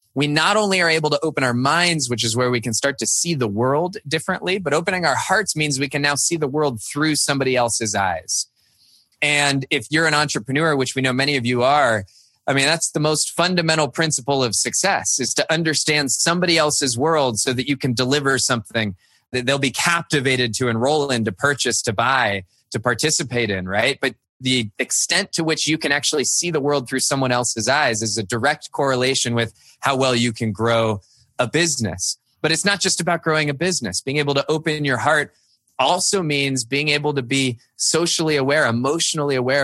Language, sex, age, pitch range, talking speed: English, male, 20-39, 120-150 Hz, 205 wpm